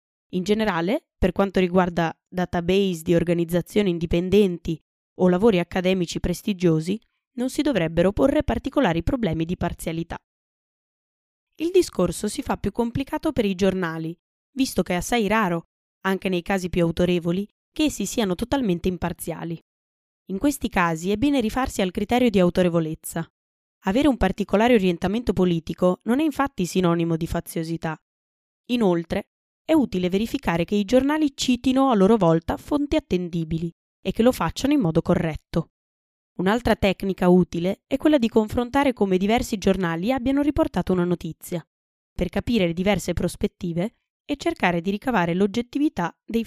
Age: 20-39